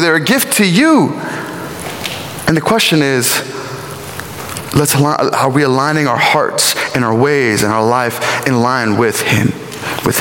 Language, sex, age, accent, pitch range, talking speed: English, male, 20-39, American, 120-160 Hz, 160 wpm